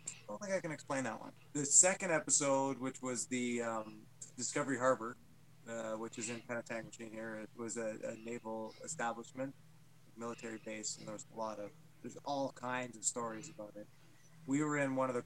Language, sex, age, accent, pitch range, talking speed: English, male, 30-49, American, 120-150 Hz, 195 wpm